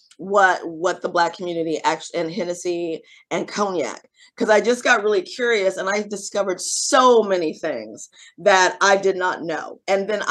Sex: female